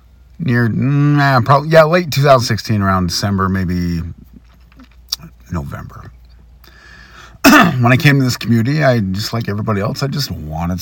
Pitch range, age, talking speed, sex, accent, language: 90-130 Hz, 40-59, 130 wpm, male, American, English